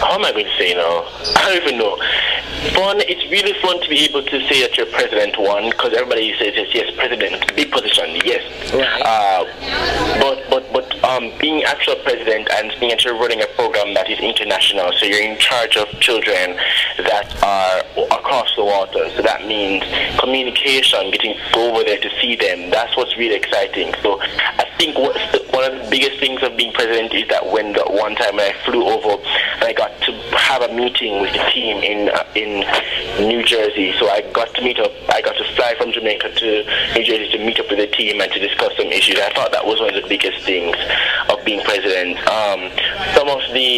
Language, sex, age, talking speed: English, male, 20-39, 205 wpm